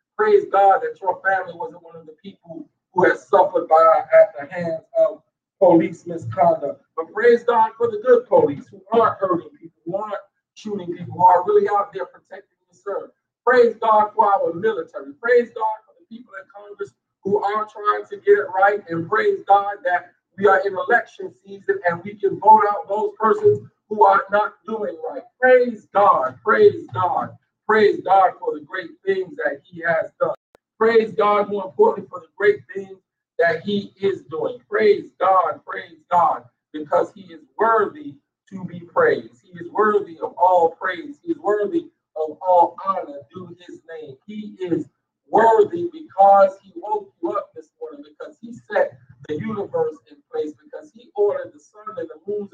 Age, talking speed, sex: 50-69, 185 wpm, male